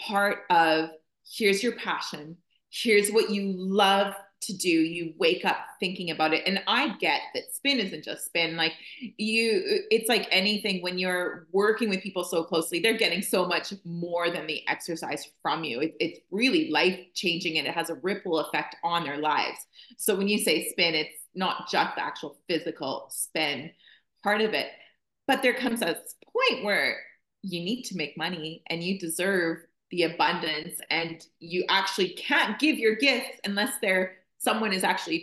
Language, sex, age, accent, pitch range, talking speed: English, female, 30-49, American, 170-220 Hz, 175 wpm